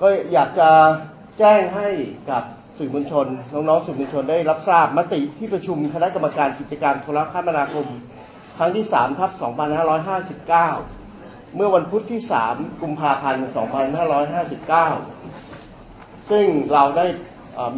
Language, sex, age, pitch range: Thai, male, 30-49, 135-170 Hz